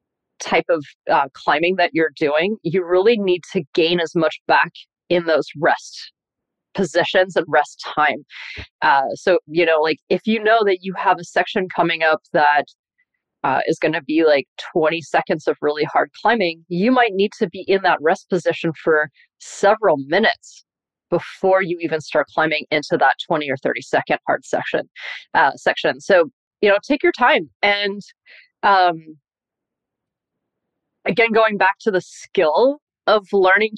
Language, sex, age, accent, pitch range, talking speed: English, female, 30-49, American, 165-205 Hz, 165 wpm